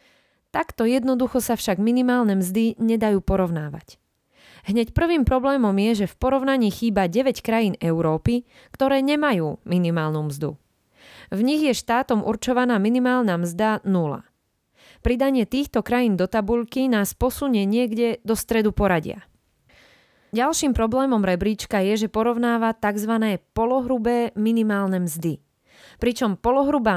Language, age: Slovak, 20-39